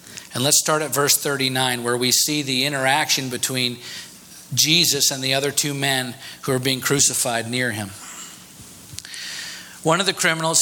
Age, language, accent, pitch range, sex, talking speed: 40-59, English, American, 130-160 Hz, male, 160 wpm